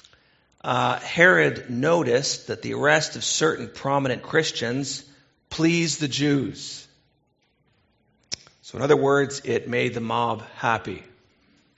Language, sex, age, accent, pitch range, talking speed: English, male, 40-59, American, 120-155 Hz, 110 wpm